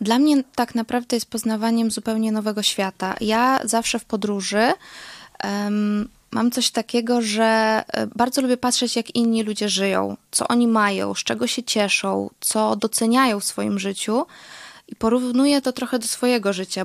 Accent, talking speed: native, 155 wpm